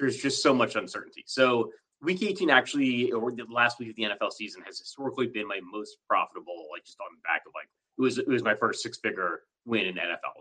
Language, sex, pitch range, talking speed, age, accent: English, male, 115-140 Hz, 230 wpm, 30-49, American